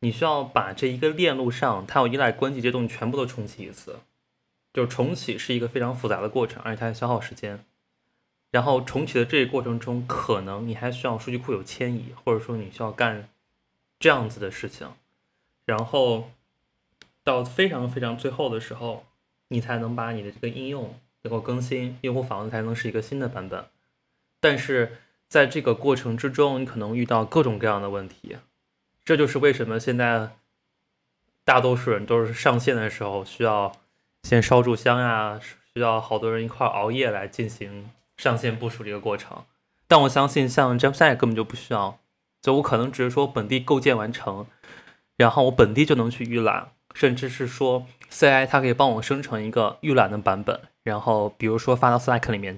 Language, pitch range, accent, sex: Chinese, 110-130 Hz, native, male